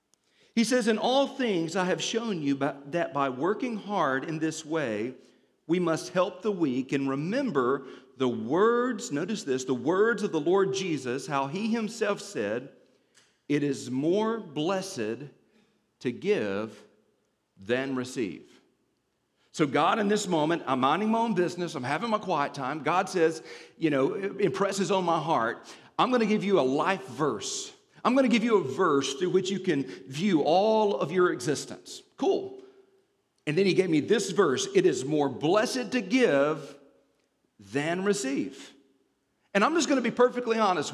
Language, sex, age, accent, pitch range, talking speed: English, male, 50-69, American, 150-235 Hz, 175 wpm